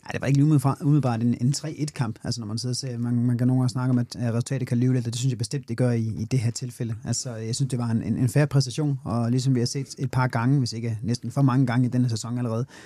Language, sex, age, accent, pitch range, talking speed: Danish, male, 30-49, native, 115-130 Hz, 310 wpm